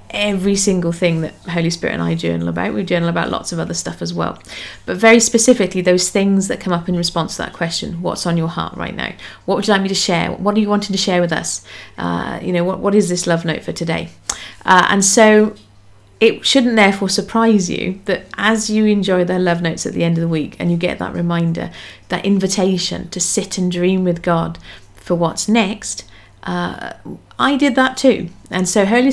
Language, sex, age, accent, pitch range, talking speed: English, female, 40-59, British, 170-205 Hz, 225 wpm